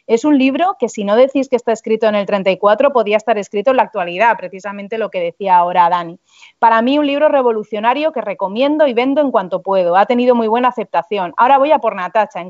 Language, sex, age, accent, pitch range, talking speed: Spanish, female, 30-49, Spanish, 200-240 Hz, 230 wpm